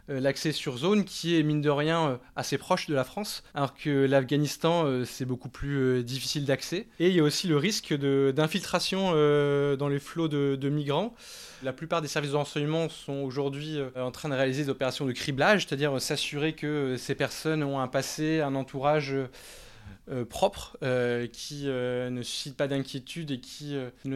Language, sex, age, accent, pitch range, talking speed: French, male, 20-39, French, 130-150 Hz, 175 wpm